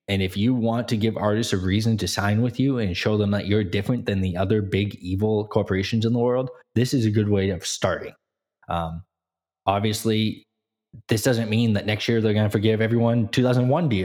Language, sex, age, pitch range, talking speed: English, male, 20-39, 95-115 Hz, 210 wpm